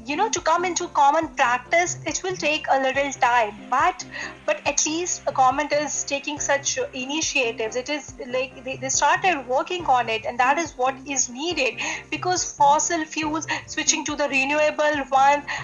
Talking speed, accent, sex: 175 wpm, Indian, female